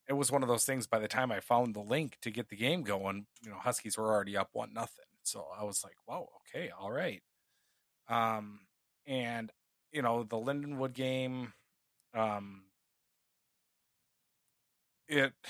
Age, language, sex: 30-49, English, male